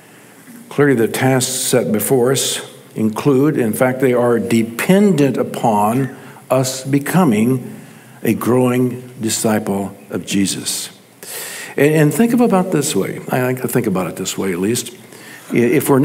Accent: American